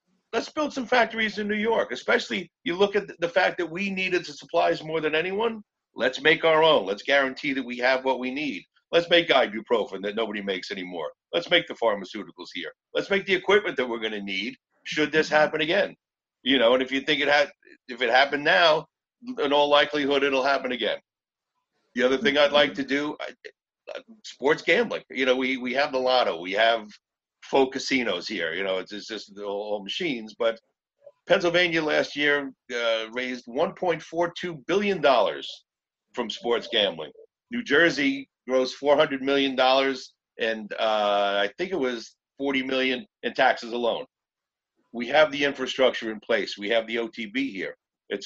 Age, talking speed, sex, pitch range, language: 50-69, 180 wpm, male, 115-170 Hz, English